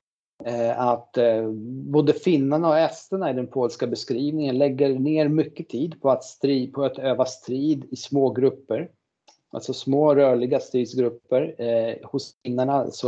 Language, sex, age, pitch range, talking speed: Swedish, male, 40-59, 120-145 Hz, 145 wpm